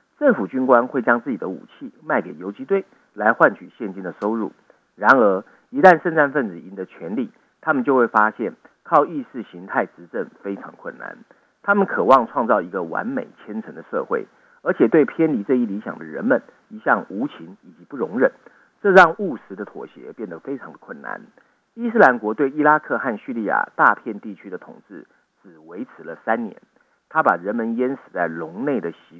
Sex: male